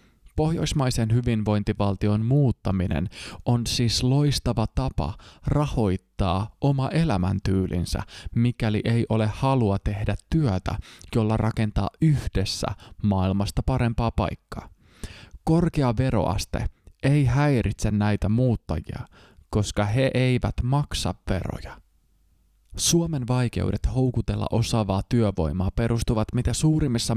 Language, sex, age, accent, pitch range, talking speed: Finnish, male, 20-39, native, 100-125 Hz, 90 wpm